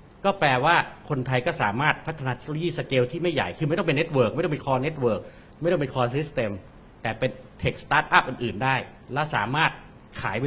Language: Thai